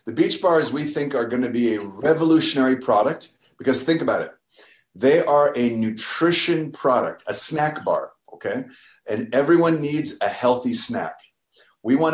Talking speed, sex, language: 165 wpm, male, Spanish